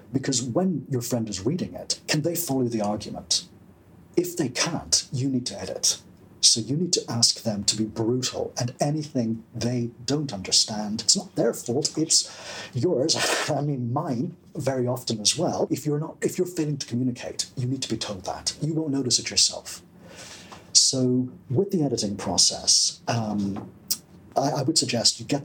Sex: male